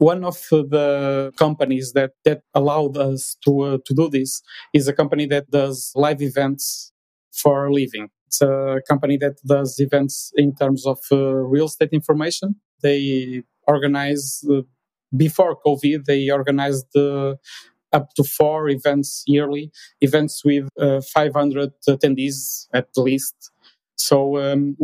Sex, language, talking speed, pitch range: male, English, 140 wpm, 140-150 Hz